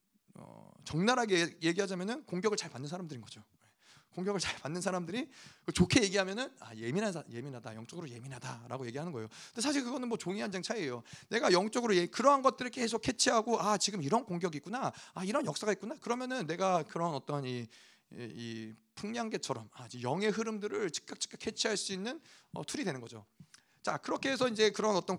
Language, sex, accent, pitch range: Korean, male, native, 140-210 Hz